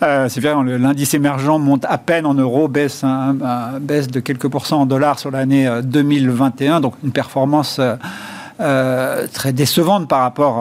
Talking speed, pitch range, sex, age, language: 165 wpm, 130-155 Hz, male, 50-69, French